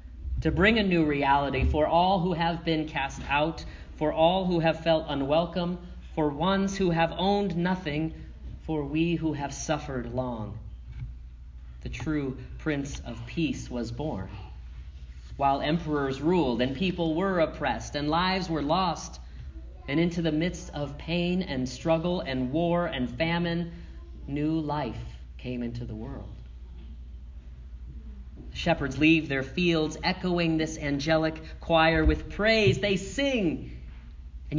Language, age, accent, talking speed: English, 40-59, American, 135 wpm